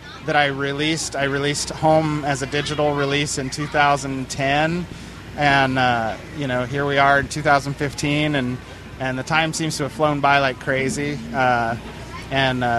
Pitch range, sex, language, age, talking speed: 130-150 Hz, male, English, 30-49, 160 wpm